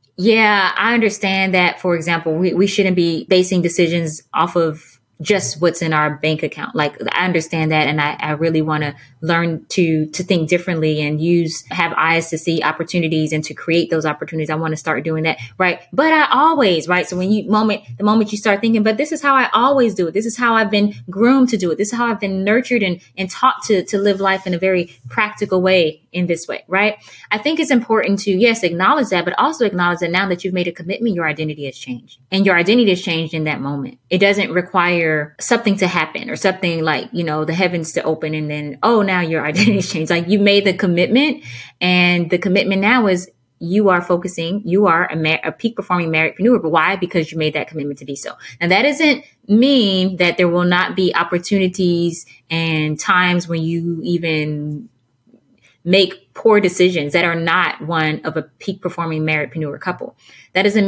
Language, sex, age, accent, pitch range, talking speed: English, female, 20-39, American, 160-200 Hz, 220 wpm